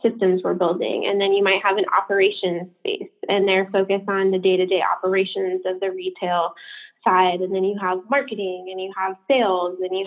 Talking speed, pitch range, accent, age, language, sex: 195 wpm, 190-225 Hz, American, 10-29, English, female